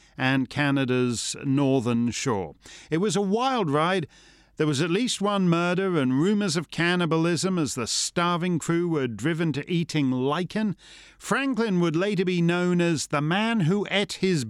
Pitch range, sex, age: 135-195 Hz, male, 50-69